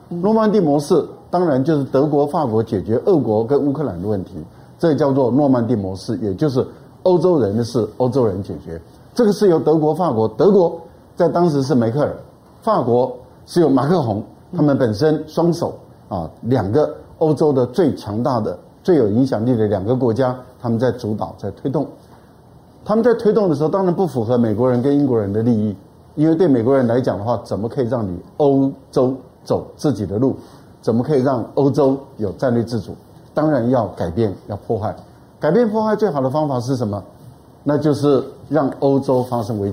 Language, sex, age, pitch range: Chinese, male, 50-69, 115-155 Hz